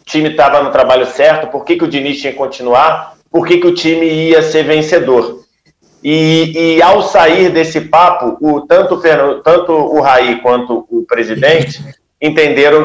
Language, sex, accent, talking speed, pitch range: Portuguese, male, Brazilian, 175 wpm, 145-180 Hz